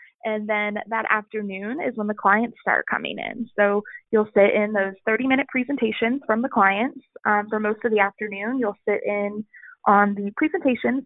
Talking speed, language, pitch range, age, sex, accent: 185 wpm, English, 205-240 Hz, 20-39, female, American